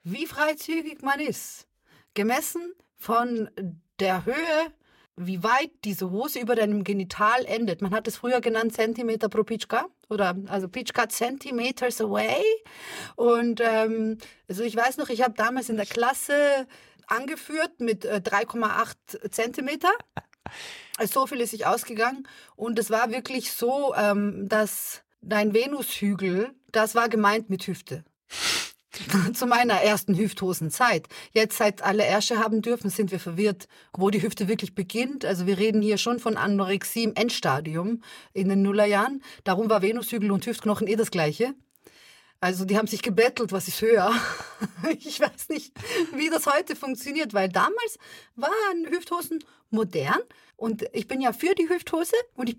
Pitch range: 205-265 Hz